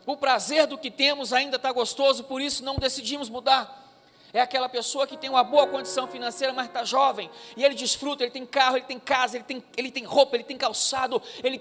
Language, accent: Portuguese, Brazilian